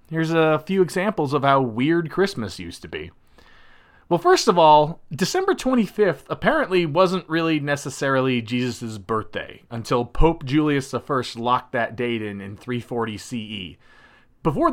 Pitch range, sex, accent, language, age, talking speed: 115-165 Hz, male, American, English, 30-49, 145 wpm